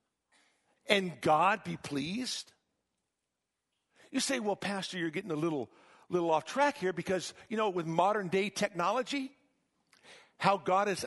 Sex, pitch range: male, 185-240 Hz